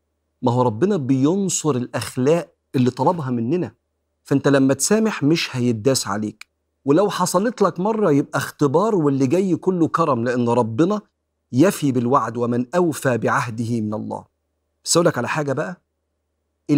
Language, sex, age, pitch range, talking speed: Arabic, male, 40-59, 115-160 Hz, 130 wpm